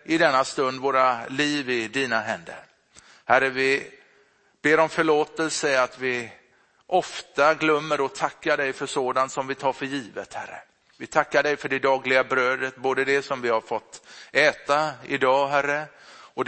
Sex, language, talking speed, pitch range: male, Swedish, 165 wpm, 130-150 Hz